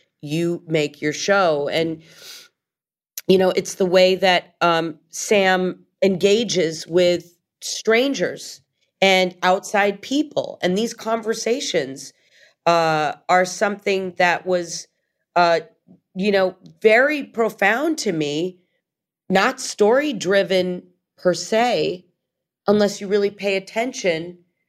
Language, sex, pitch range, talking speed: English, female, 175-210 Hz, 105 wpm